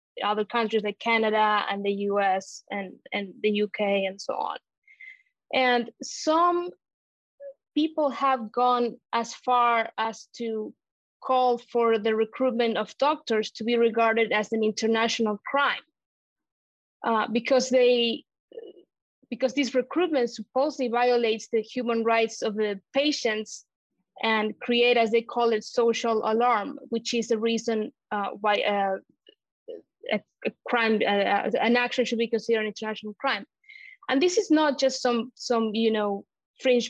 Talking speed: 140 wpm